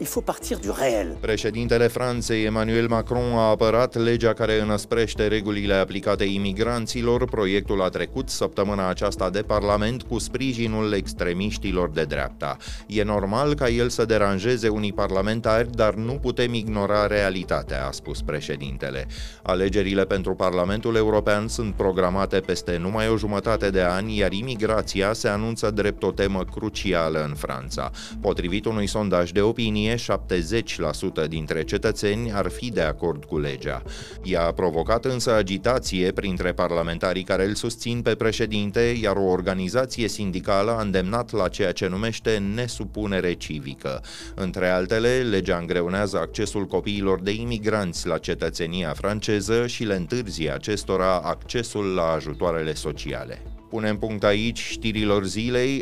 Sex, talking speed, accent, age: male, 130 wpm, native, 30-49